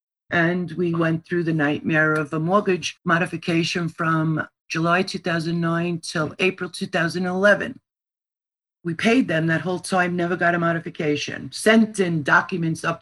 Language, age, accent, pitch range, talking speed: English, 50-69, American, 160-180 Hz, 140 wpm